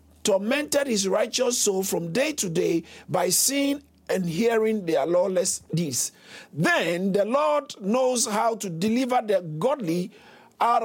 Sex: male